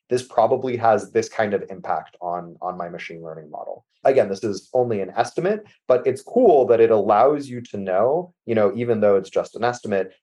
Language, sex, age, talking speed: English, male, 30-49, 205 wpm